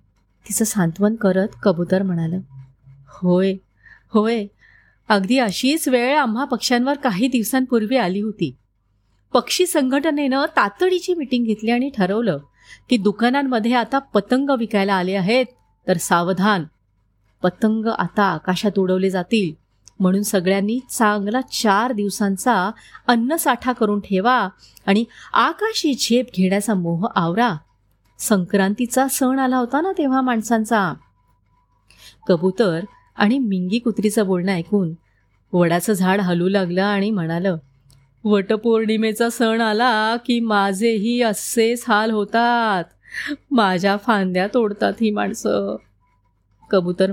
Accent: native